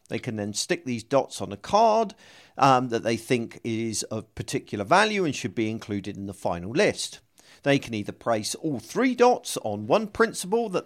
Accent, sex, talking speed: British, male, 200 wpm